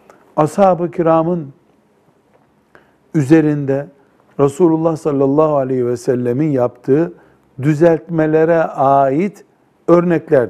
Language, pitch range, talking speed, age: Turkish, 130-170 Hz, 70 wpm, 60-79